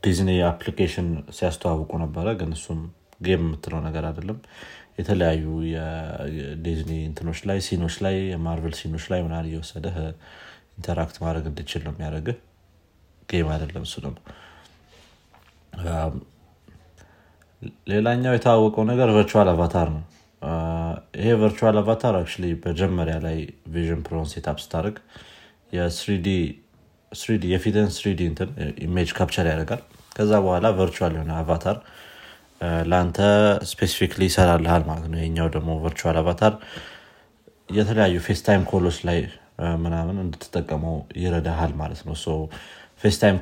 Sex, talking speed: male, 95 wpm